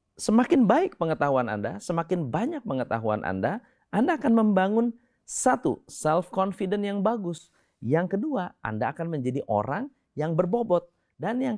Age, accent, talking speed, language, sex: 30-49, native, 135 wpm, Indonesian, male